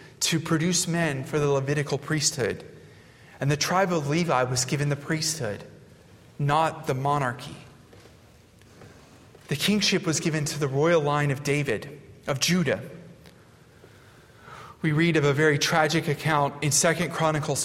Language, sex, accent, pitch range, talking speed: English, male, American, 135-160 Hz, 140 wpm